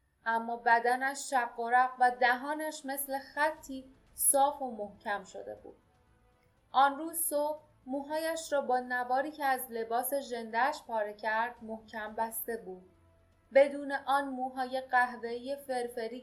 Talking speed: 130 wpm